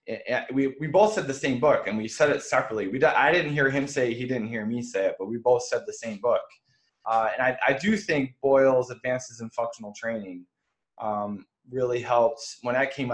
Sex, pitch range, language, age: male, 105-130 Hz, English, 20-39